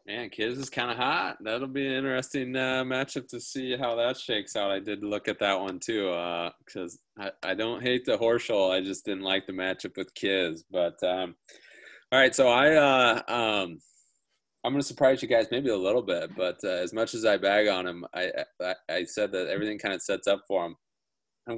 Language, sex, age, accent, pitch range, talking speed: English, male, 20-39, American, 95-120 Hz, 230 wpm